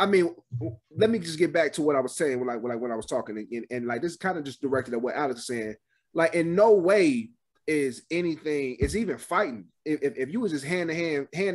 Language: English